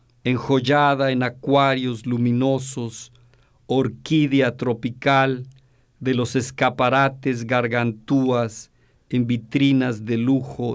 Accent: Mexican